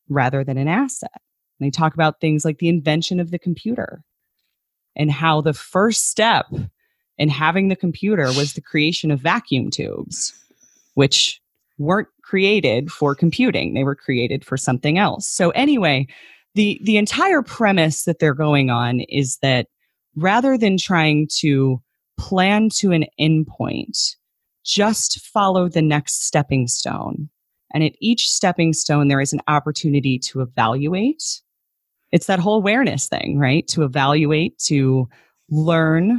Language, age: English, 30-49